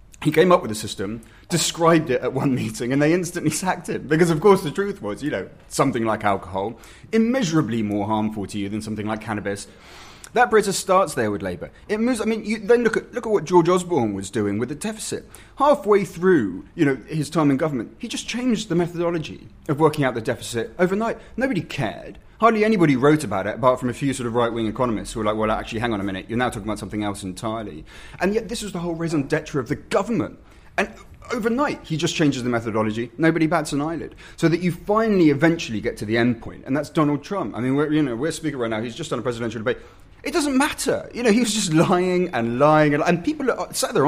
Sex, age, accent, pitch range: male, 30-49, British, 115-185 Hz